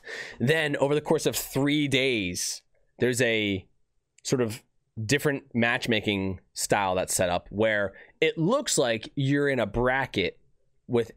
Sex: male